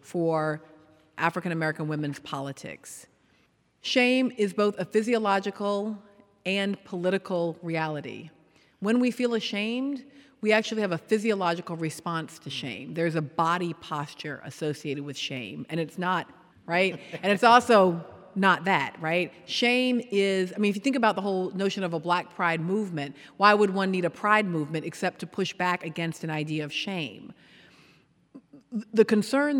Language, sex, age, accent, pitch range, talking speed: English, female, 40-59, American, 160-205 Hz, 150 wpm